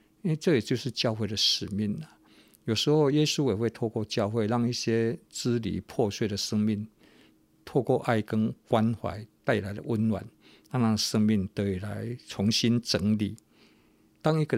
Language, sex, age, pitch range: Chinese, male, 50-69, 105-125 Hz